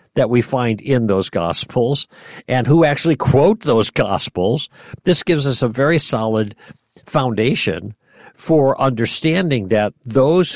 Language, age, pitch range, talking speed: English, 50-69, 110-145 Hz, 130 wpm